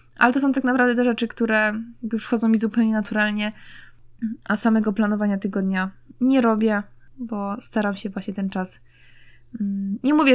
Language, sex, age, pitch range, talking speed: Polish, female, 20-39, 190-225 Hz, 155 wpm